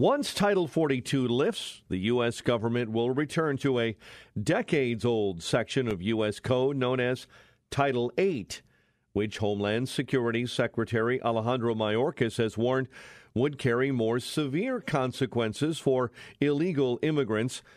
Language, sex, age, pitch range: English, male, 50-69, 115-145 Hz